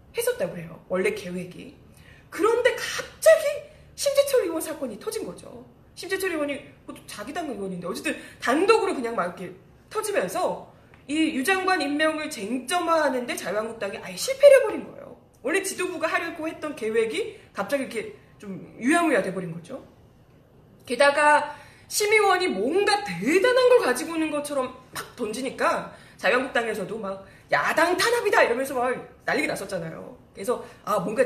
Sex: female